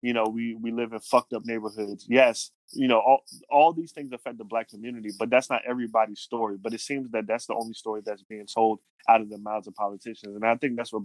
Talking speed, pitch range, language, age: 255 wpm, 110-130 Hz, English, 20-39